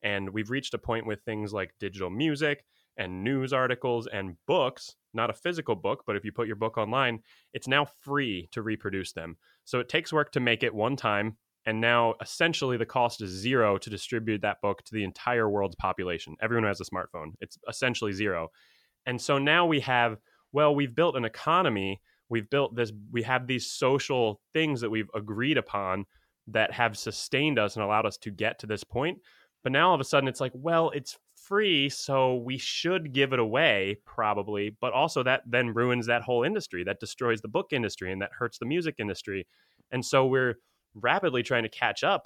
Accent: American